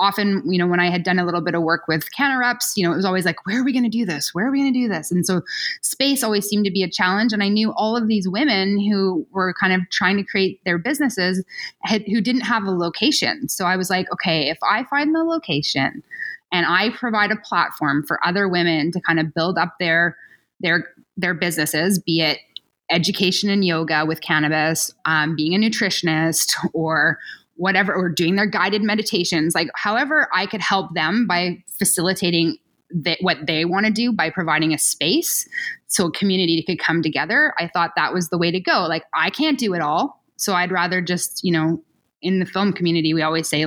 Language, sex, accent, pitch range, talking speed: English, female, American, 165-215 Hz, 220 wpm